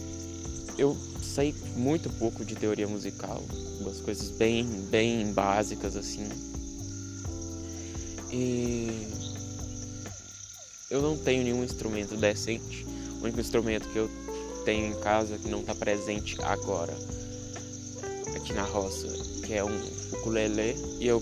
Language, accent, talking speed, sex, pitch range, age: Portuguese, Brazilian, 120 wpm, male, 100-110 Hz, 20-39